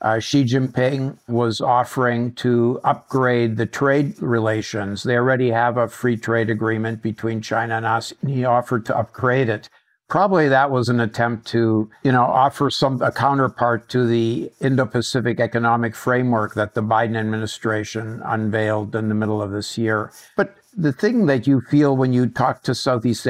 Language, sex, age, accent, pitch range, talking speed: English, male, 60-79, American, 115-130 Hz, 170 wpm